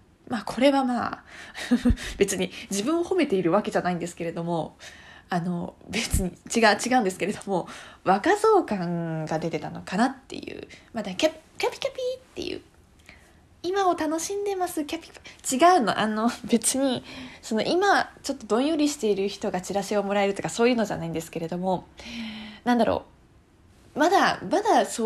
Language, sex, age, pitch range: Japanese, female, 20-39, 180-285 Hz